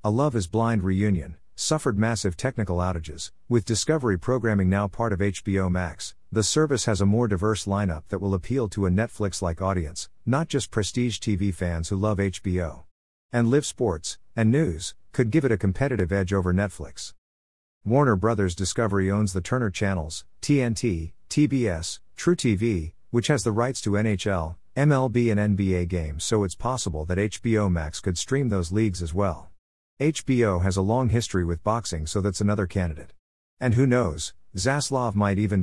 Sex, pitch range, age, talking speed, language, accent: male, 90-115 Hz, 50-69, 175 wpm, English, American